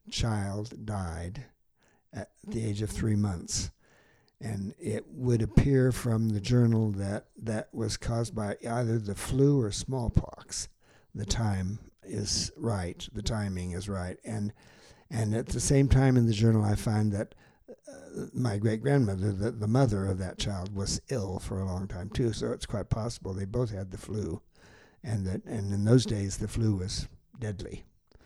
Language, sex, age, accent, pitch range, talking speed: English, male, 60-79, American, 100-120 Hz, 170 wpm